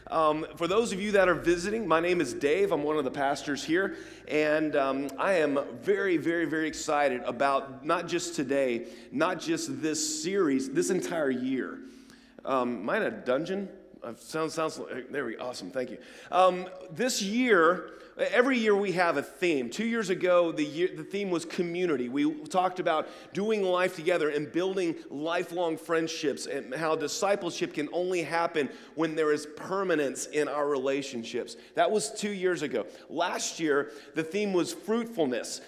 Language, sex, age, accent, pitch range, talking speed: English, male, 30-49, American, 150-200 Hz, 170 wpm